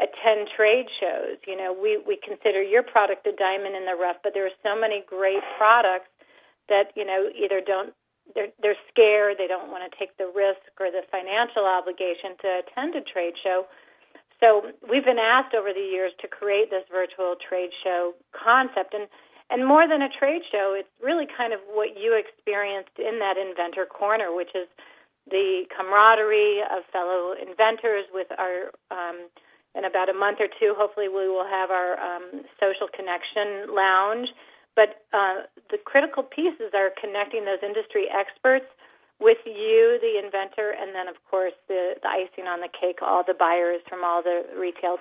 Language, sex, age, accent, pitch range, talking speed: English, female, 40-59, American, 185-220 Hz, 180 wpm